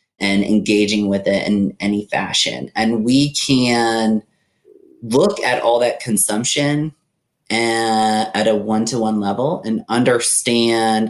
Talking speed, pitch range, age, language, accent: 120 wpm, 105-125 Hz, 30-49, English, American